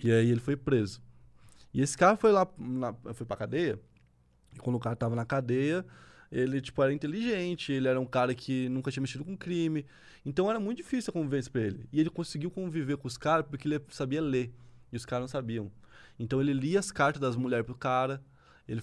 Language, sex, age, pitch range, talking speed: Portuguese, male, 20-39, 120-155 Hz, 220 wpm